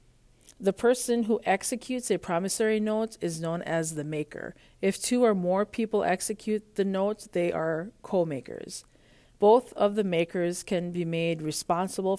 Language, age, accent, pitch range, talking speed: English, 50-69, American, 160-200 Hz, 155 wpm